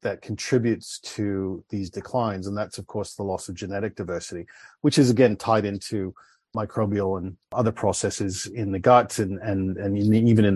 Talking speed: 175 wpm